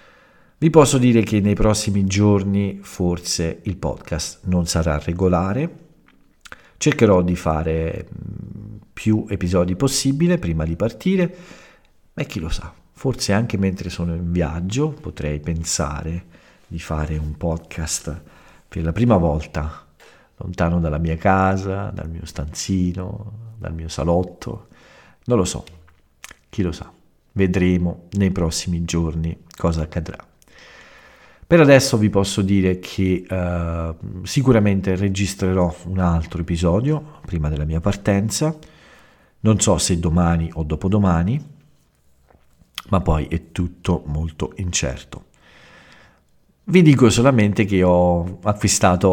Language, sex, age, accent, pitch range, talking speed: Italian, male, 50-69, native, 80-105 Hz, 120 wpm